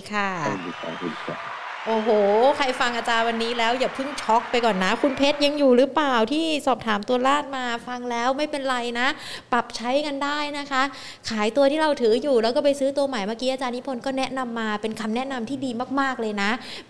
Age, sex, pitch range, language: 20-39, female, 215-265 Hz, Thai